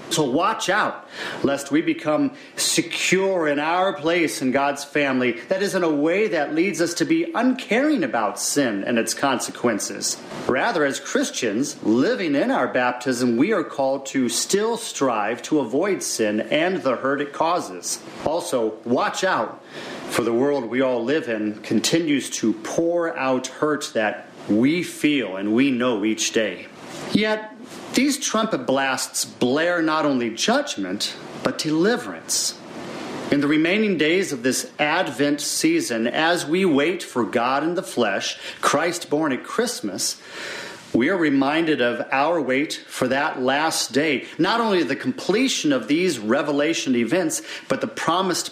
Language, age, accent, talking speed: English, 40-59, American, 150 wpm